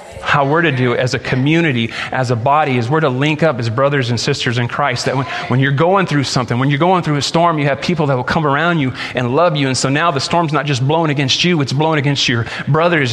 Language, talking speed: English, 275 wpm